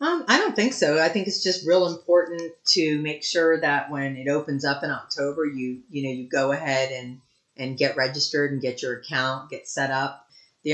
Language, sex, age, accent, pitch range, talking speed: English, female, 40-59, American, 130-160 Hz, 220 wpm